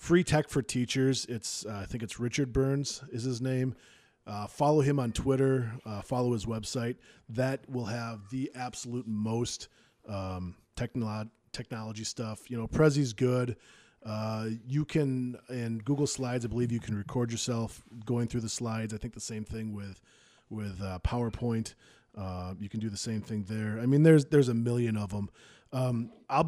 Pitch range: 110-130 Hz